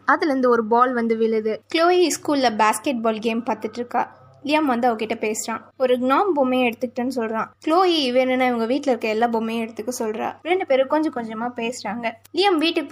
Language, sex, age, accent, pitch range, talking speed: Tamil, female, 20-39, native, 230-275 Hz, 170 wpm